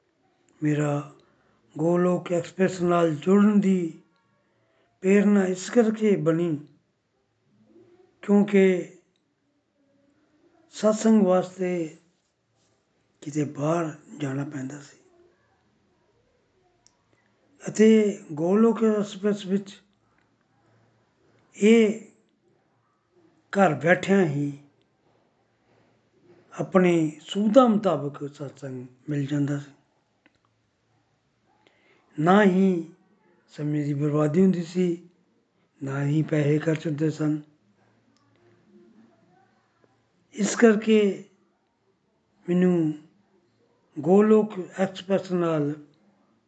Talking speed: 55 wpm